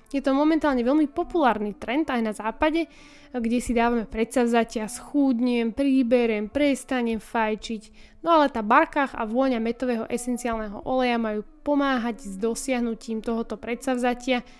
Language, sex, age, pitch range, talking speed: Slovak, female, 10-29, 225-280 Hz, 130 wpm